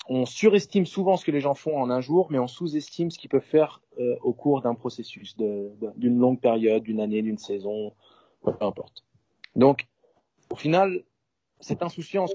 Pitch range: 125-150 Hz